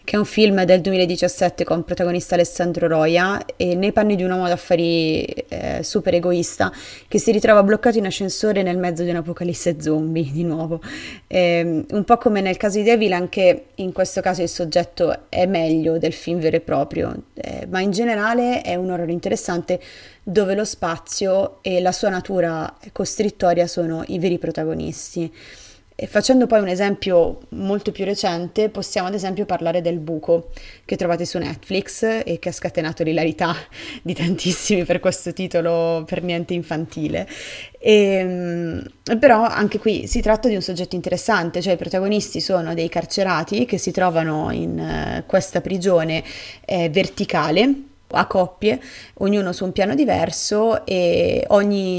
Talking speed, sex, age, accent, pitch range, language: 160 wpm, female, 20-39, native, 170-205 Hz, Italian